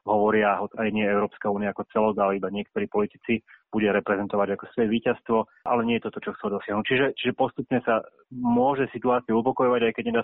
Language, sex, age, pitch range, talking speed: Slovak, male, 30-49, 100-120 Hz, 205 wpm